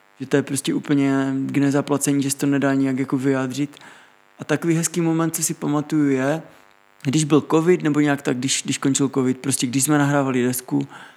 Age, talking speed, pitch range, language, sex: 20-39, 195 wpm, 130-145 Hz, Czech, male